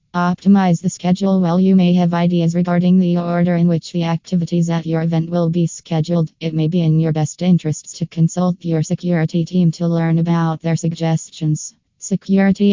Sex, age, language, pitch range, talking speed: female, 20-39, English, 165-175 Hz, 185 wpm